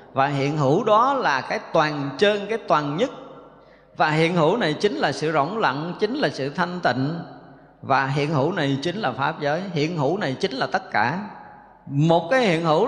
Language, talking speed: Vietnamese, 205 wpm